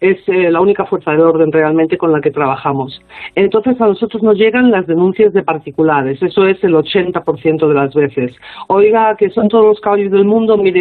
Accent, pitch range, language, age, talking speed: Spanish, 160-205 Hz, Spanish, 40-59, 205 wpm